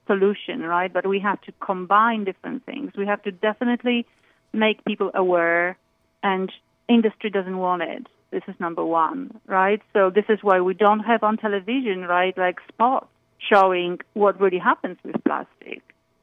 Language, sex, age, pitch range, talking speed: English, female, 40-59, 180-215 Hz, 165 wpm